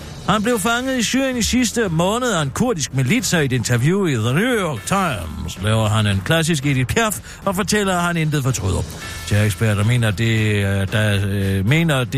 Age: 60-79